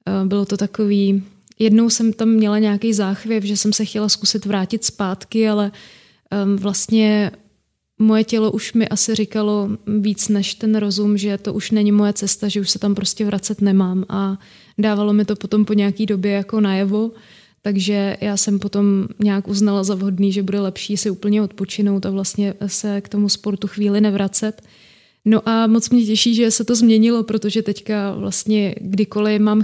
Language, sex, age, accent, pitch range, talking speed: Czech, female, 20-39, native, 200-215 Hz, 175 wpm